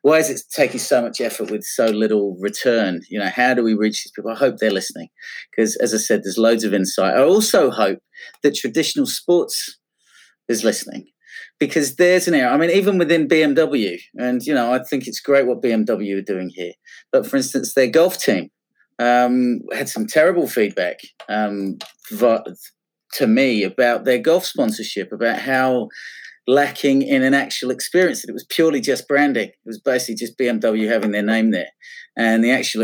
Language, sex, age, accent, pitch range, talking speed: English, male, 30-49, British, 120-180 Hz, 190 wpm